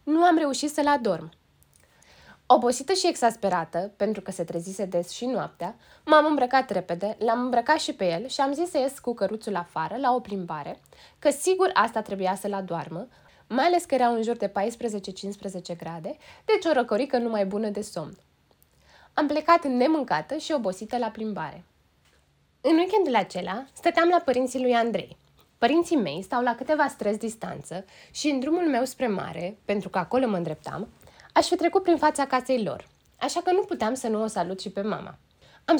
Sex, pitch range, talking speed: female, 185-275 Hz, 180 wpm